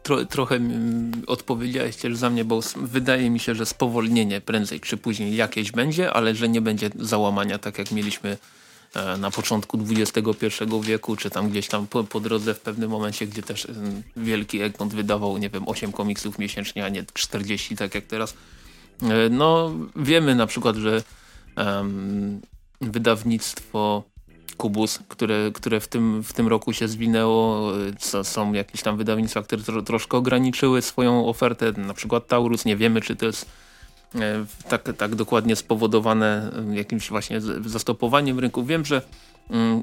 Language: Polish